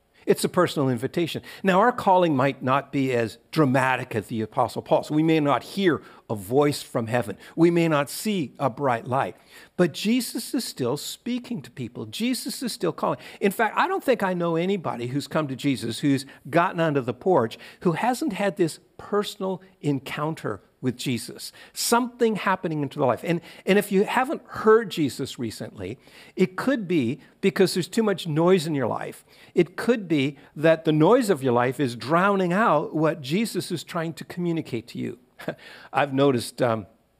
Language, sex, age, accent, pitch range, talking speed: English, male, 50-69, American, 130-190 Hz, 180 wpm